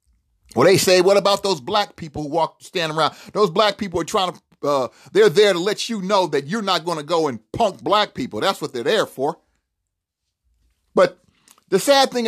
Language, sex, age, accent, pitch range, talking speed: English, male, 40-59, American, 195-240 Hz, 215 wpm